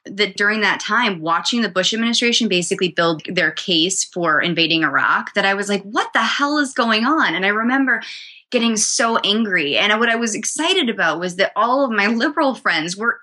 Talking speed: 205 wpm